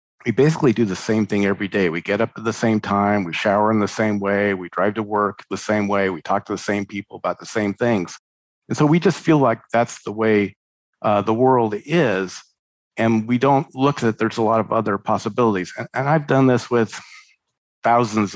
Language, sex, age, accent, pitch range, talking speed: English, male, 50-69, American, 100-125 Hz, 225 wpm